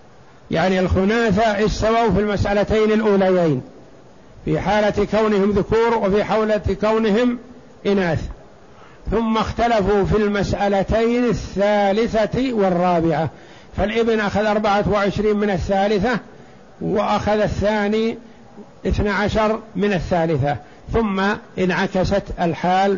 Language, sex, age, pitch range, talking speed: Arabic, male, 60-79, 185-215 Hz, 85 wpm